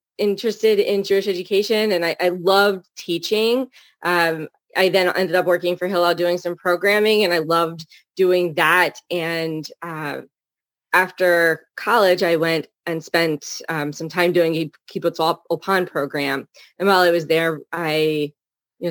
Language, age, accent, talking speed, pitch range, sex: English, 20-39, American, 150 wpm, 145-175 Hz, female